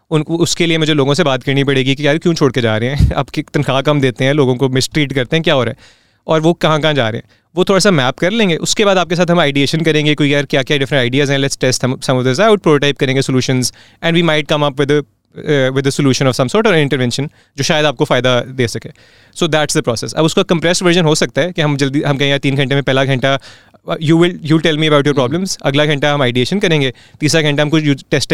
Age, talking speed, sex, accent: 30-49, 120 wpm, male, Indian